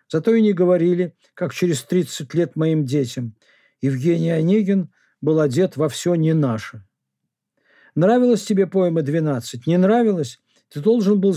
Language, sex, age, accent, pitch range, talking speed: Russian, male, 50-69, native, 150-190 Hz, 145 wpm